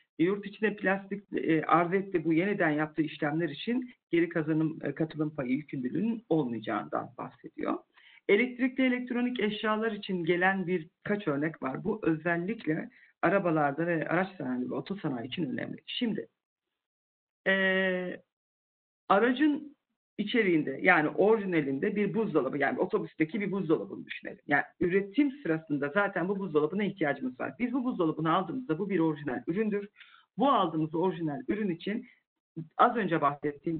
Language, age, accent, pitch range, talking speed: Turkish, 50-69, native, 155-210 Hz, 130 wpm